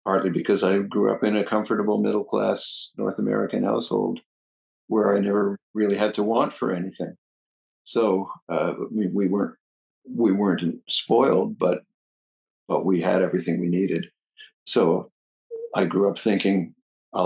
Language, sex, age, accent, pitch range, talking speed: English, male, 60-79, American, 90-115 Hz, 145 wpm